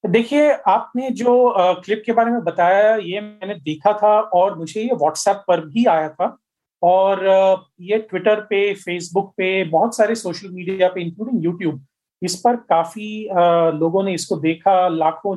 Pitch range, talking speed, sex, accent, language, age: 175-210 Hz, 170 wpm, male, native, Hindi, 40-59